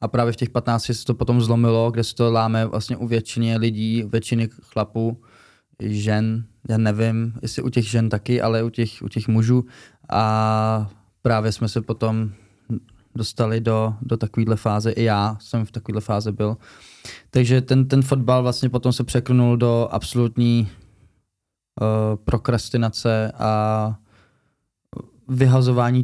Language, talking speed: Czech, 145 wpm